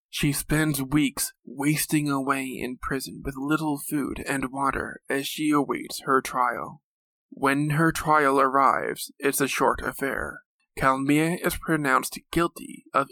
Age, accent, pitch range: 20-39, American, 135-150 Hz